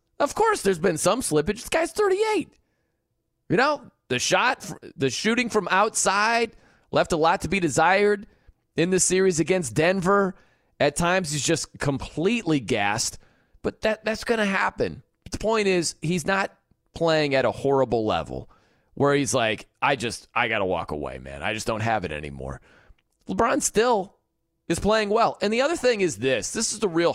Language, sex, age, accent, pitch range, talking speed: English, male, 30-49, American, 145-215 Hz, 185 wpm